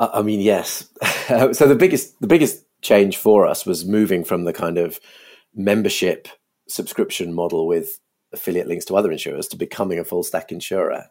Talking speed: 175 wpm